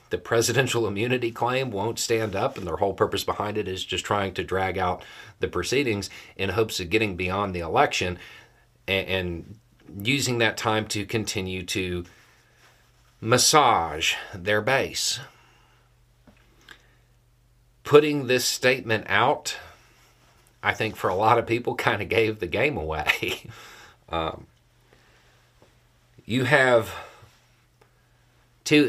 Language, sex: English, male